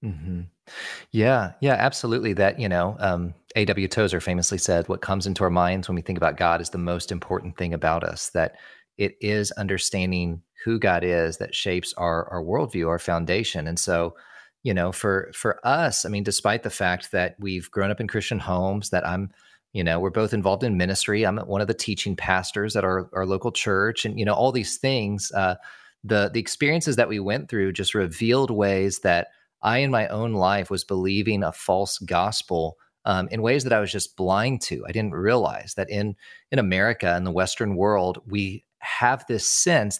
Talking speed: 205 wpm